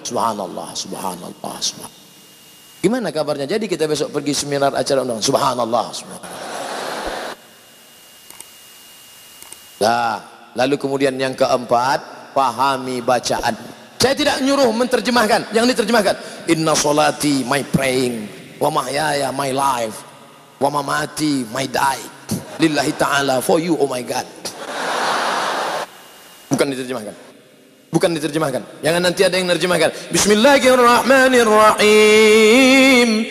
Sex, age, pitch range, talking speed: male, 30-49, 140-210 Hz, 100 wpm